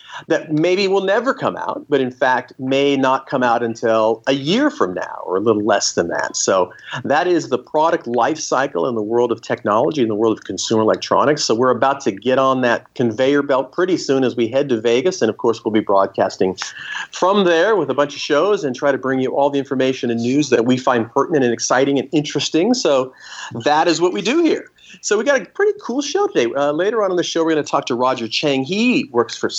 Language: English